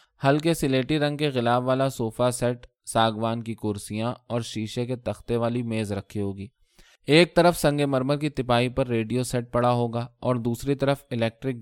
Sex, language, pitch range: male, Urdu, 110-135 Hz